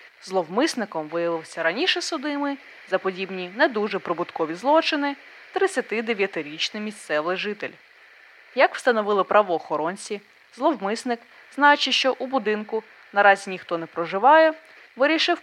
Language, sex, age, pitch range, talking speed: Ukrainian, female, 20-39, 180-285 Hz, 100 wpm